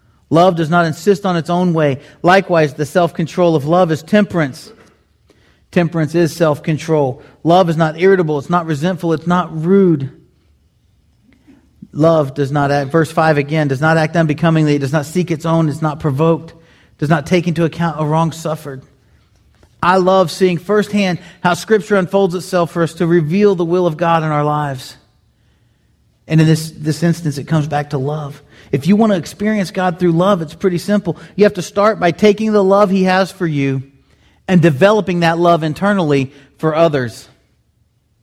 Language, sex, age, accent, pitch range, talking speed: English, male, 40-59, American, 150-190 Hz, 180 wpm